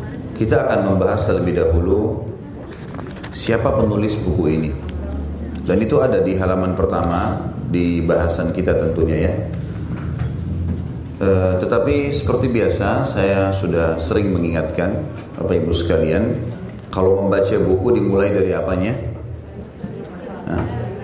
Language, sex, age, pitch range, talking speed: Indonesian, male, 30-49, 85-105 Hz, 110 wpm